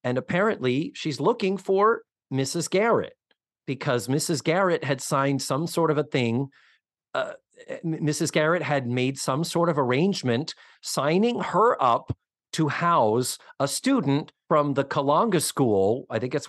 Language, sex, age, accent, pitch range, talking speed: English, male, 40-59, American, 125-175 Hz, 145 wpm